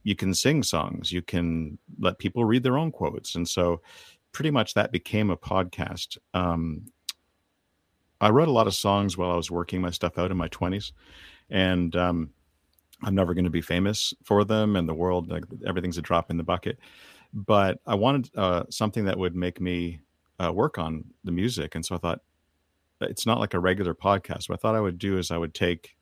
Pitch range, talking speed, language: 85-100 Hz, 210 wpm, English